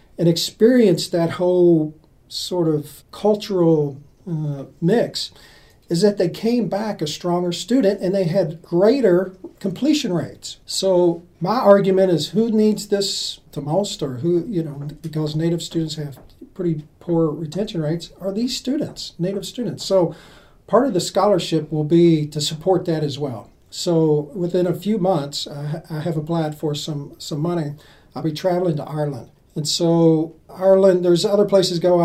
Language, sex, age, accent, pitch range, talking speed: English, male, 40-59, American, 155-185 Hz, 165 wpm